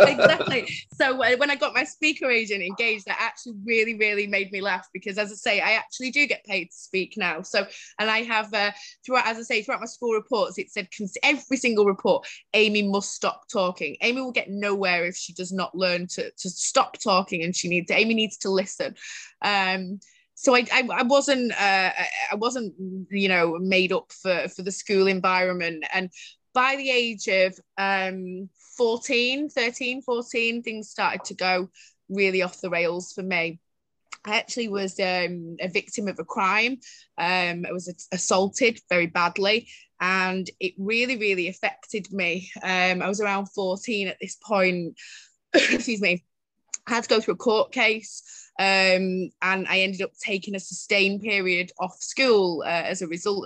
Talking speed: 180 wpm